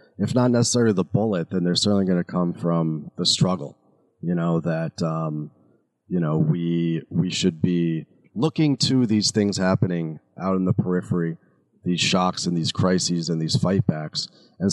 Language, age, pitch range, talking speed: English, 30-49, 85-105 Hz, 175 wpm